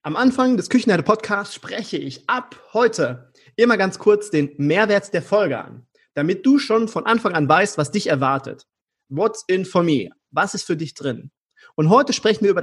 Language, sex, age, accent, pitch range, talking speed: German, male, 30-49, German, 145-210 Hz, 190 wpm